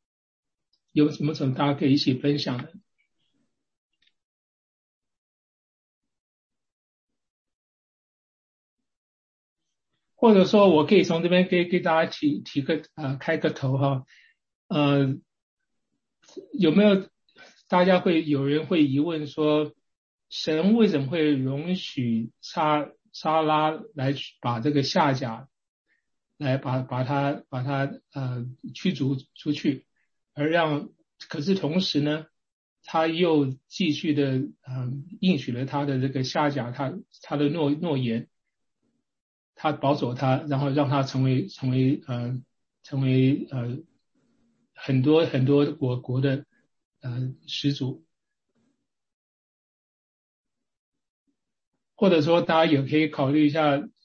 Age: 60-79